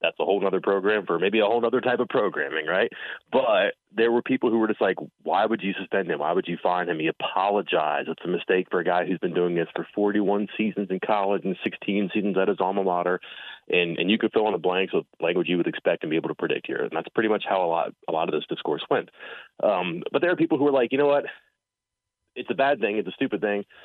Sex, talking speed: male, 270 wpm